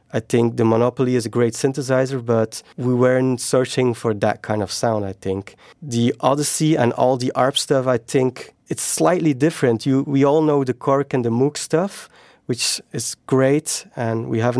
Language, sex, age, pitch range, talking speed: English, male, 30-49, 120-140 Hz, 190 wpm